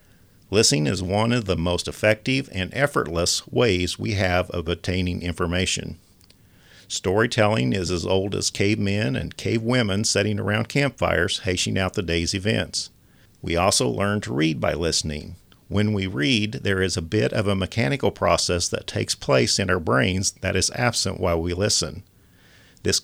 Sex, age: male, 50-69